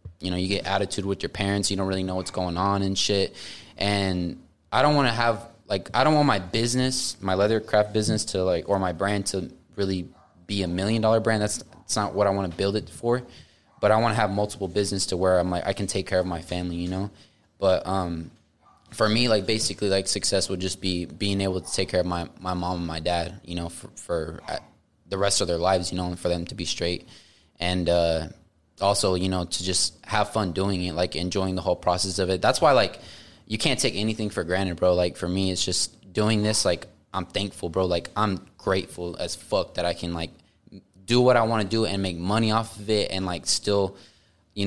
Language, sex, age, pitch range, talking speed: English, male, 20-39, 90-105 Hz, 240 wpm